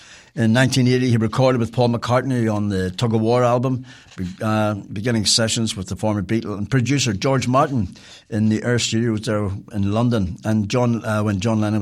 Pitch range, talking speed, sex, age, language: 100-120 Hz, 190 wpm, male, 60-79, English